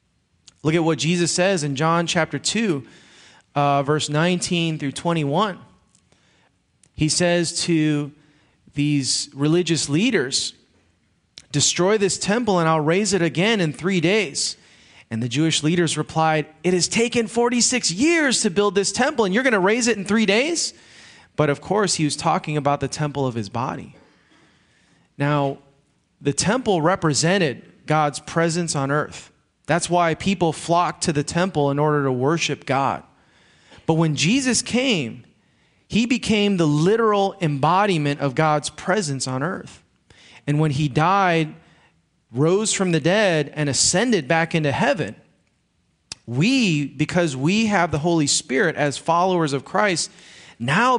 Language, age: English, 30-49